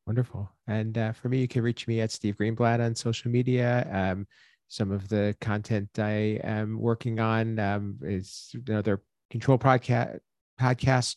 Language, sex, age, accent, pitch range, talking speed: English, male, 40-59, American, 105-115 Hz, 155 wpm